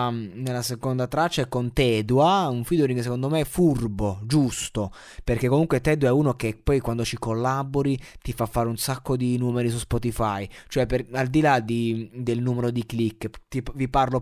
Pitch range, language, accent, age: 115-135 Hz, Italian, native, 20-39